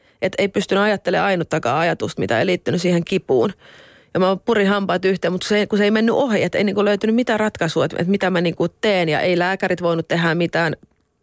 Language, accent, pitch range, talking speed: Finnish, native, 165-195 Hz, 215 wpm